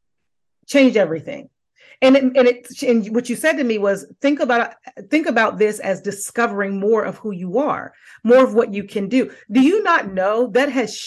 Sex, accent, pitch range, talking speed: female, American, 200-250 Hz, 200 wpm